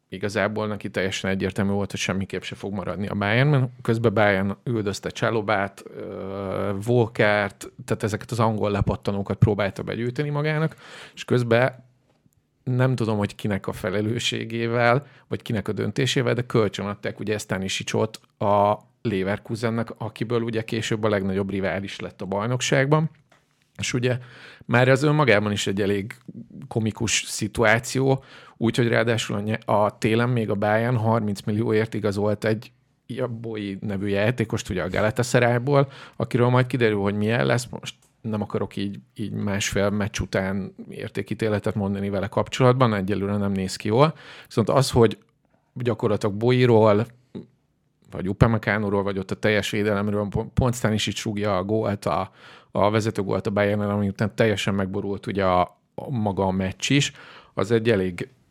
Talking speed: 150 wpm